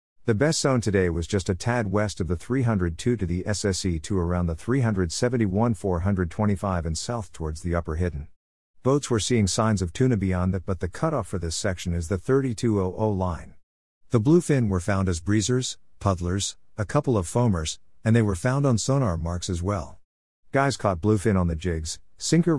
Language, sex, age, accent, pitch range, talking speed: English, male, 50-69, American, 90-120 Hz, 185 wpm